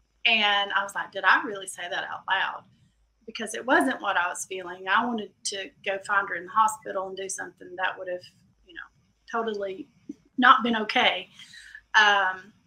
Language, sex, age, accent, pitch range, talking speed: English, female, 30-49, American, 195-225 Hz, 190 wpm